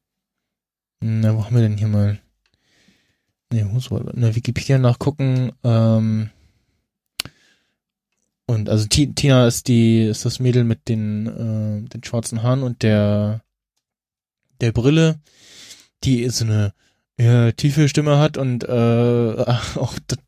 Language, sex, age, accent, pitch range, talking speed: German, male, 20-39, German, 115-130 Hz, 125 wpm